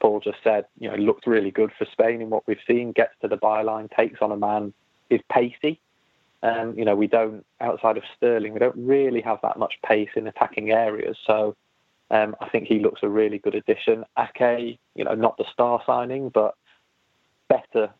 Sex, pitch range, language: male, 105-120 Hz, English